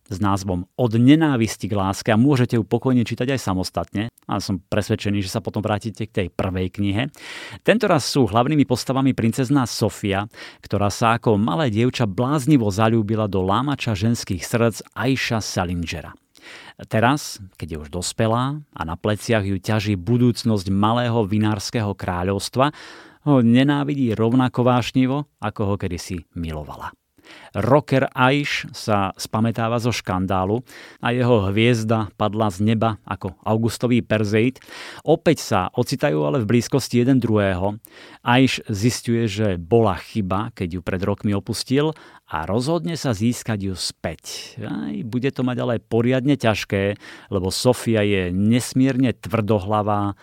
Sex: male